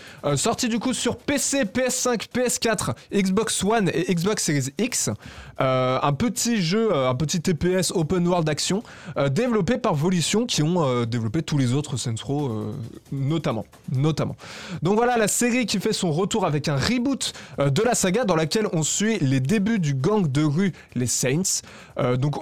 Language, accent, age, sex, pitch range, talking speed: French, French, 20-39, male, 140-205 Hz, 185 wpm